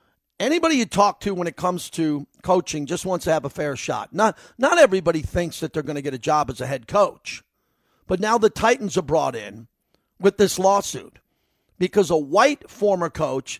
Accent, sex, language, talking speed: American, male, English, 205 wpm